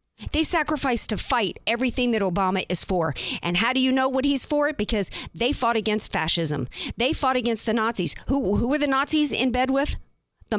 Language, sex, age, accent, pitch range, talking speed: English, female, 50-69, American, 195-270 Hz, 210 wpm